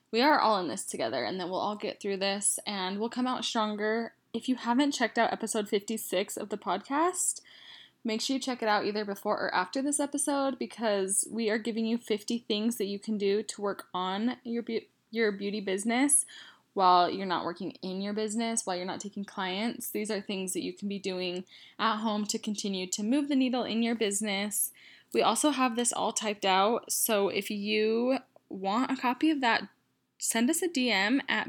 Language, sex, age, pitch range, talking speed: English, female, 10-29, 200-240 Hz, 210 wpm